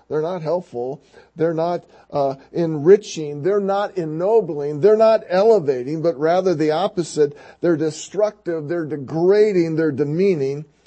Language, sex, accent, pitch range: English, male, American, 130-185 Hz